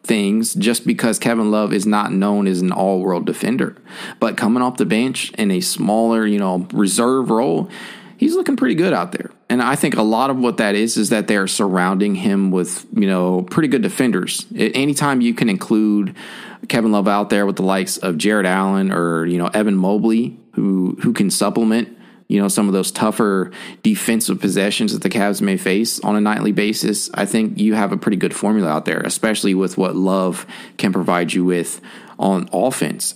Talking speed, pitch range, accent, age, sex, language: 200 wpm, 100-135 Hz, American, 20-39, male, English